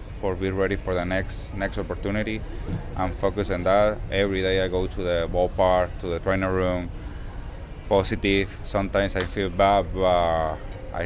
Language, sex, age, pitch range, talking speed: English, male, 20-39, 90-100 Hz, 155 wpm